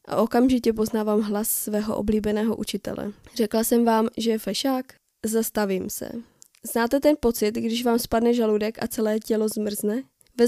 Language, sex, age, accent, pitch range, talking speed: Czech, female, 20-39, native, 215-235 Hz, 155 wpm